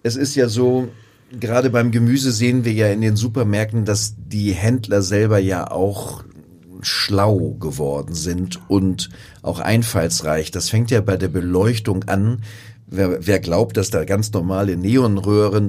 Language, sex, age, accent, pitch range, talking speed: German, male, 40-59, German, 100-125 Hz, 155 wpm